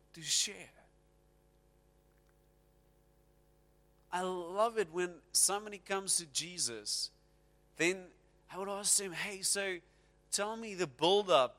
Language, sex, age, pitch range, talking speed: English, male, 30-49, 150-215 Hz, 110 wpm